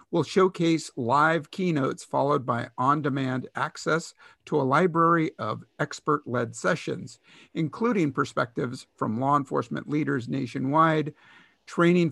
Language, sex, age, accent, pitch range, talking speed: English, male, 50-69, American, 135-175 Hz, 110 wpm